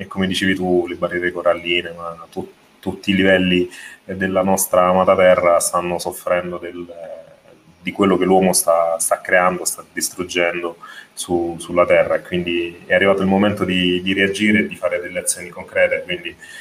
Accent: native